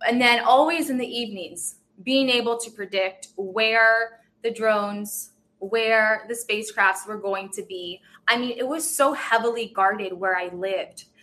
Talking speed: 160 wpm